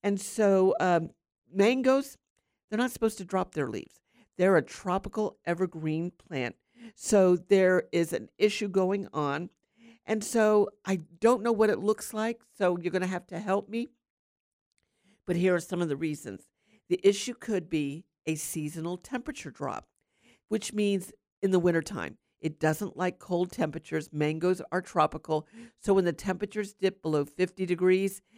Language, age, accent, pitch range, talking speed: English, 50-69, American, 165-210 Hz, 160 wpm